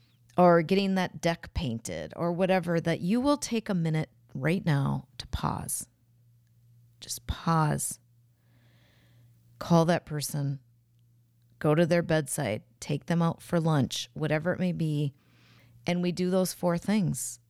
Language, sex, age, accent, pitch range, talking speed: English, female, 40-59, American, 120-175 Hz, 140 wpm